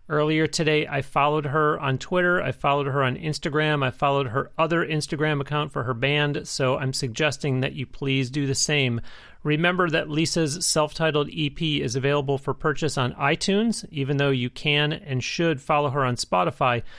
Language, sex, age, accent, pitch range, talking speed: English, male, 30-49, American, 135-155 Hz, 180 wpm